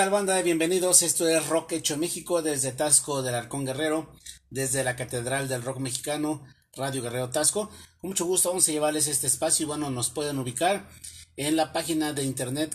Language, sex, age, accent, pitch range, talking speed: Spanish, male, 40-59, Mexican, 130-165 Hz, 190 wpm